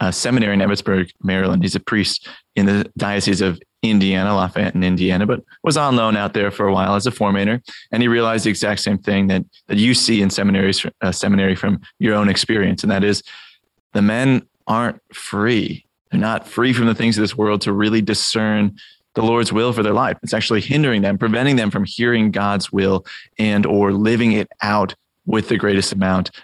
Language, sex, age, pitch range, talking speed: English, male, 20-39, 100-115 Hz, 205 wpm